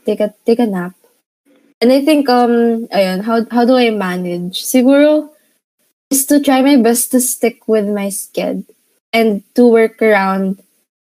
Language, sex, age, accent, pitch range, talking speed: Filipino, female, 20-39, native, 205-250 Hz, 165 wpm